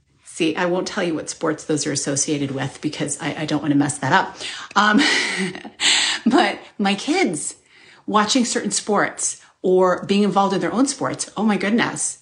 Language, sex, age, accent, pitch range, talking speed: English, female, 30-49, American, 165-215 Hz, 175 wpm